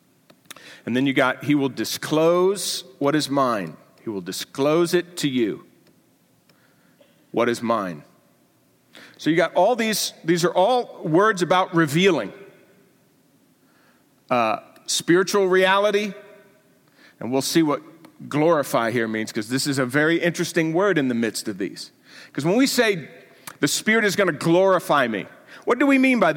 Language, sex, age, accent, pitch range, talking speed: English, male, 50-69, American, 155-205 Hz, 155 wpm